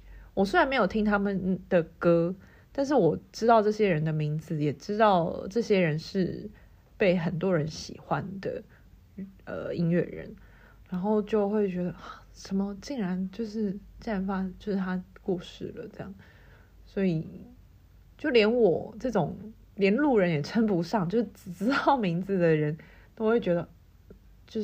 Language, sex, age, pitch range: Chinese, female, 30-49, 165-210 Hz